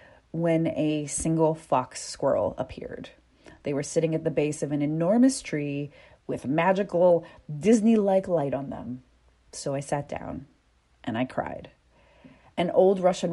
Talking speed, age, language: 145 wpm, 30-49, English